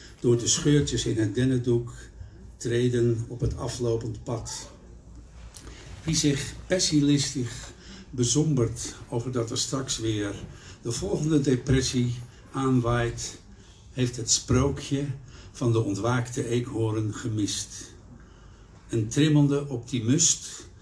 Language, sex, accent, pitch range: English, male, Dutch, 110-130 Hz